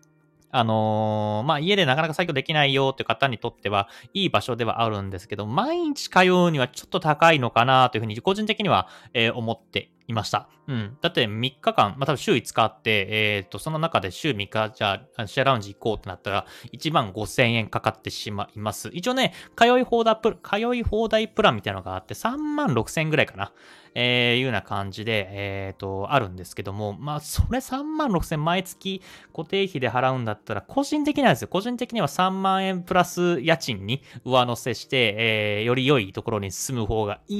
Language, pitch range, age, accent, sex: Japanese, 110-175 Hz, 20-39, native, male